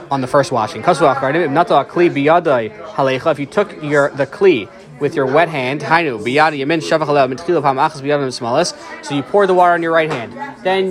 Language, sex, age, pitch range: English, male, 20-39, 140-175 Hz